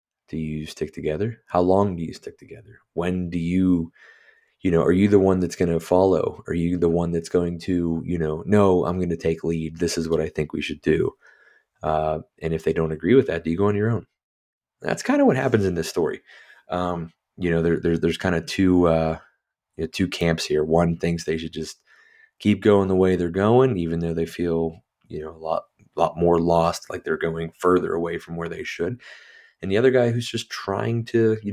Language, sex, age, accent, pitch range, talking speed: English, male, 30-49, American, 80-100 Hz, 235 wpm